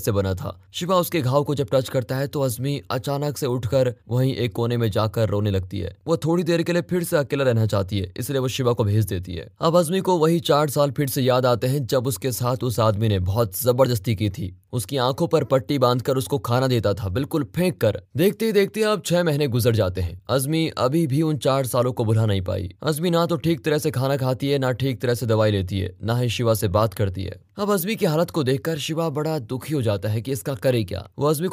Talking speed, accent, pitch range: 245 wpm, native, 110-155 Hz